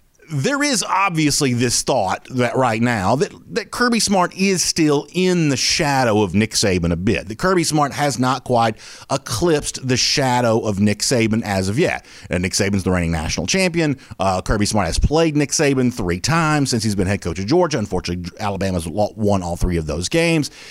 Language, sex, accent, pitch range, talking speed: English, male, American, 110-160 Hz, 195 wpm